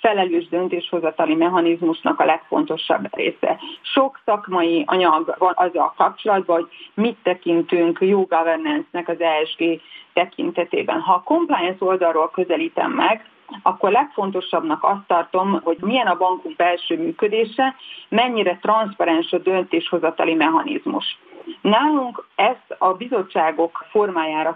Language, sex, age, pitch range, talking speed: Hungarian, female, 30-49, 175-270 Hz, 110 wpm